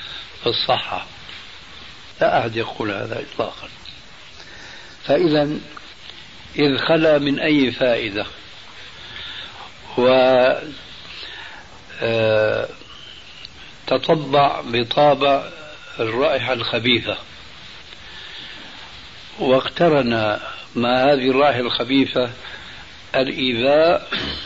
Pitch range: 115-135 Hz